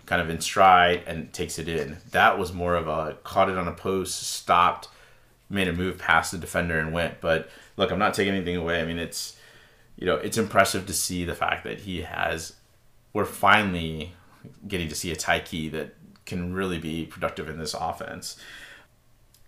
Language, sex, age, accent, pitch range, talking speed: English, male, 30-49, American, 85-110 Hz, 200 wpm